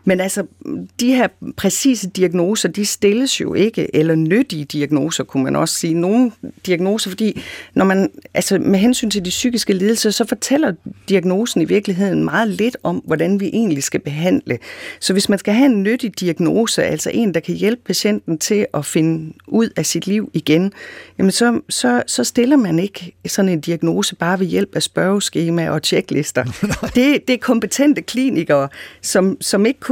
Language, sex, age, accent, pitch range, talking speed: Danish, female, 40-59, native, 165-230 Hz, 180 wpm